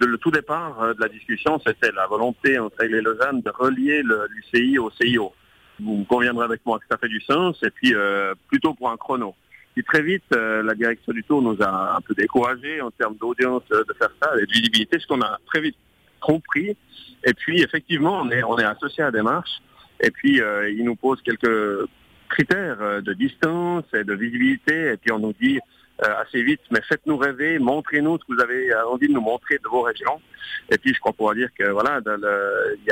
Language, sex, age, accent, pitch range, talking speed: French, male, 50-69, French, 110-165 Hz, 215 wpm